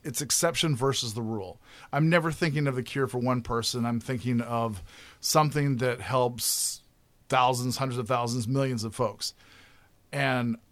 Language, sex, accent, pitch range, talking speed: English, male, American, 120-145 Hz, 155 wpm